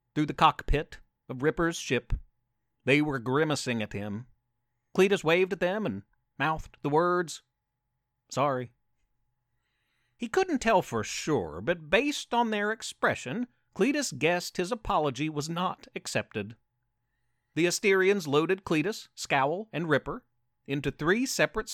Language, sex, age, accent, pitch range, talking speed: English, male, 40-59, American, 120-175 Hz, 130 wpm